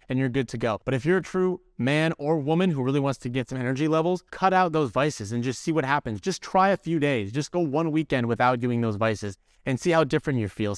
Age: 30-49